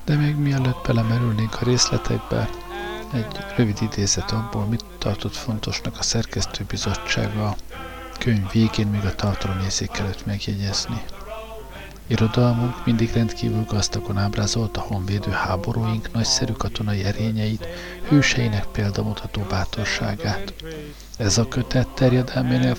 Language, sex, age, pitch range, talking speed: Hungarian, male, 50-69, 105-125 Hz, 110 wpm